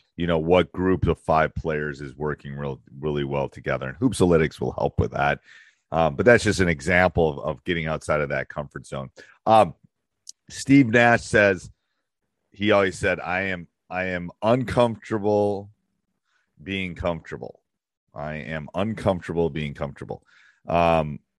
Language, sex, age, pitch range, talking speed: English, male, 40-59, 75-95 Hz, 145 wpm